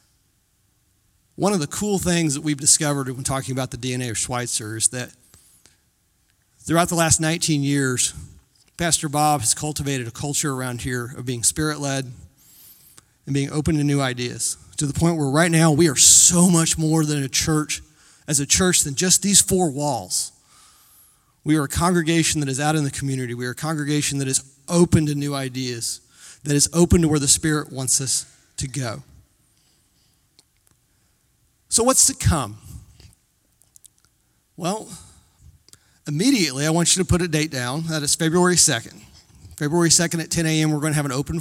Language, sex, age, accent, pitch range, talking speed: English, male, 40-59, American, 130-165 Hz, 175 wpm